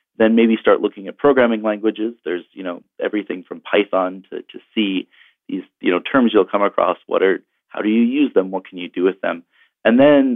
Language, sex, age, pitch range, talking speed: English, male, 30-49, 95-115 Hz, 220 wpm